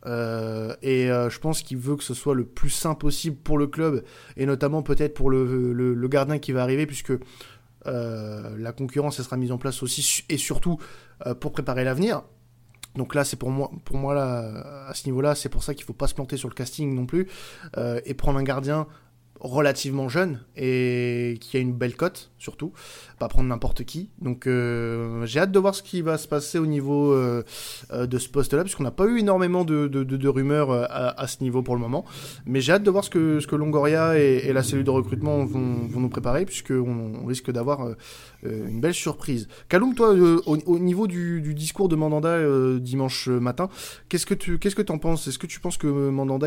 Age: 20-39